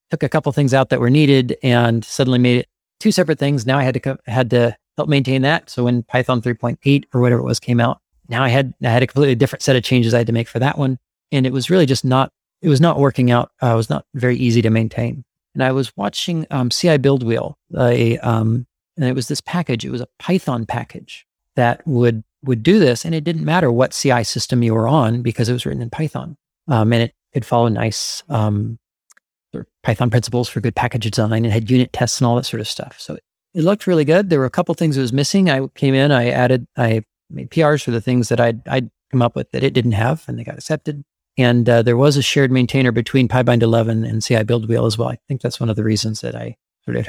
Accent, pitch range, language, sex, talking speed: American, 115-140 Hz, English, male, 265 wpm